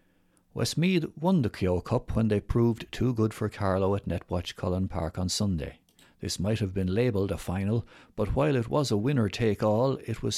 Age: 60-79